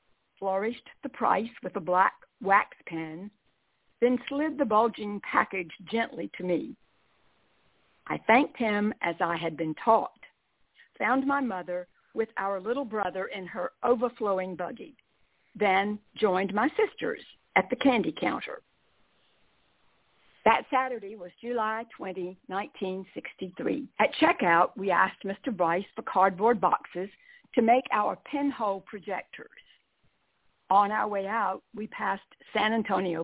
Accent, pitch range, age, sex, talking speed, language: American, 190-245 Hz, 60-79, female, 130 wpm, English